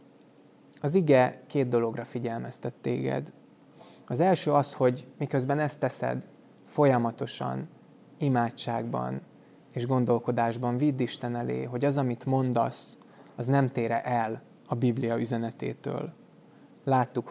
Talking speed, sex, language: 110 wpm, male, Hungarian